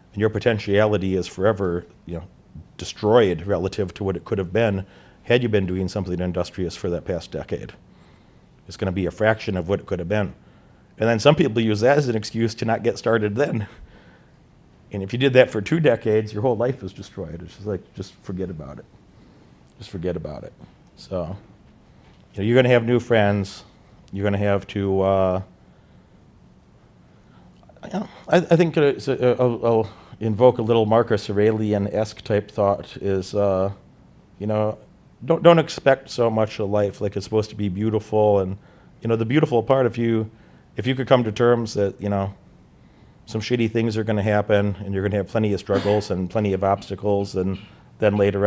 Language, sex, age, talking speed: English, male, 40-59, 195 wpm